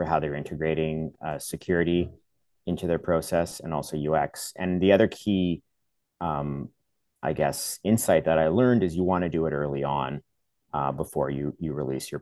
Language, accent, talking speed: English, American, 175 wpm